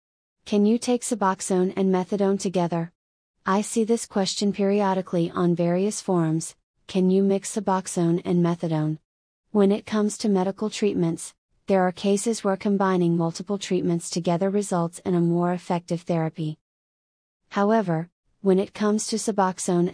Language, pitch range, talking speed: English, 175-200 Hz, 140 wpm